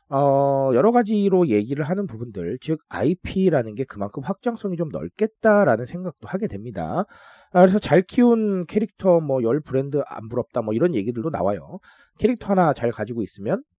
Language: Korean